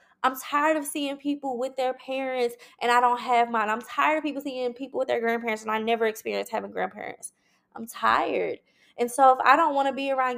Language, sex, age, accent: English, female, 20-39, American